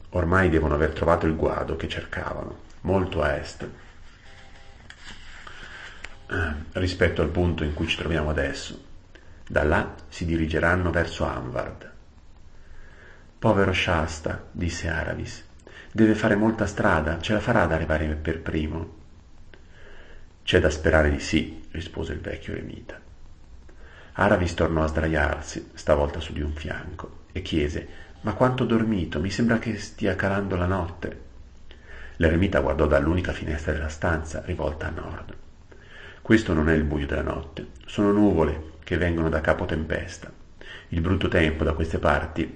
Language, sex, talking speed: Italian, male, 140 wpm